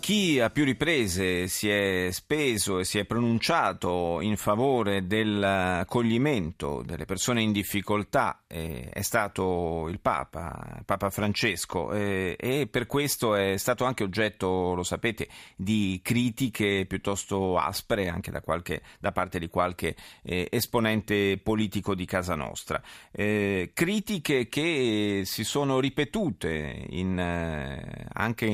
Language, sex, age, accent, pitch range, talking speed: Italian, male, 40-59, native, 90-120 Hz, 115 wpm